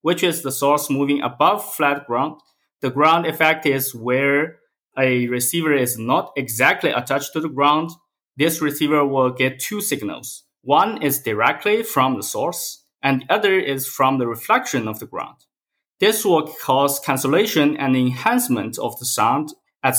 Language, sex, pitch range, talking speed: English, male, 130-175 Hz, 160 wpm